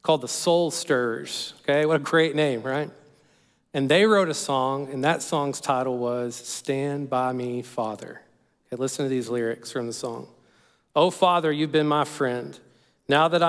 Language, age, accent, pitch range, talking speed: English, 40-59, American, 130-165 Hz, 180 wpm